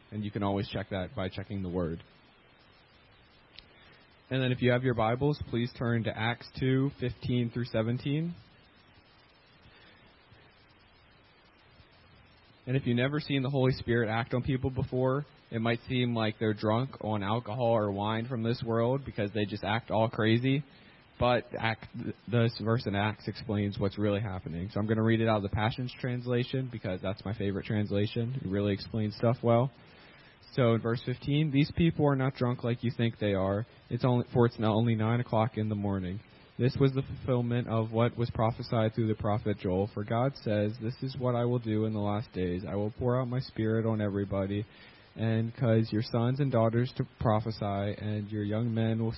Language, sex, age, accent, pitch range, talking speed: English, male, 20-39, American, 105-120 Hz, 190 wpm